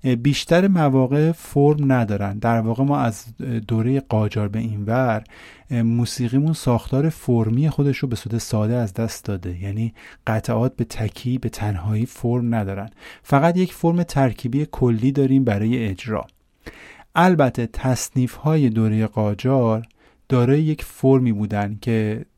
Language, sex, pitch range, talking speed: Persian, male, 105-135 Hz, 130 wpm